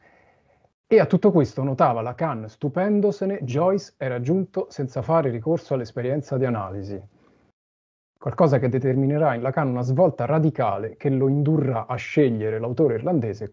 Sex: male